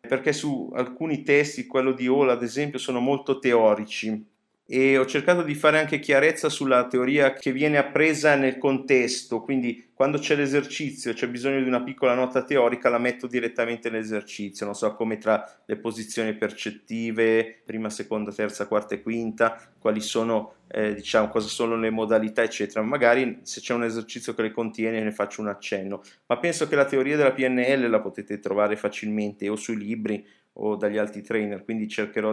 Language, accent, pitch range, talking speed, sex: Italian, native, 110-135 Hz, 175 wpm, male